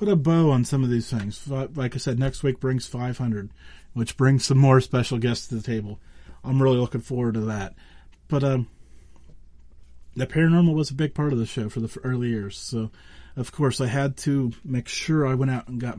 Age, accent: 30-49, American